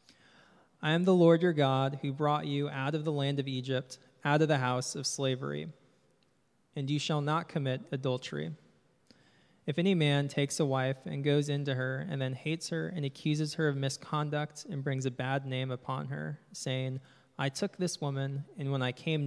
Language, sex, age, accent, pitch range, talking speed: English, male, 20-39, American, 130-150 Hz, 195 wpm